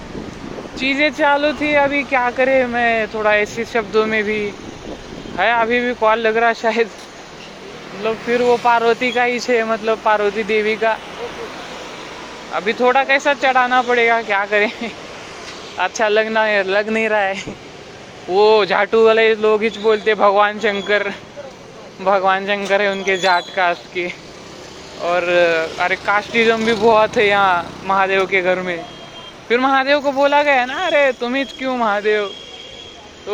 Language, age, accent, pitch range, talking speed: Marathi, 20-39, native, 200-245 Hz, 145 wpm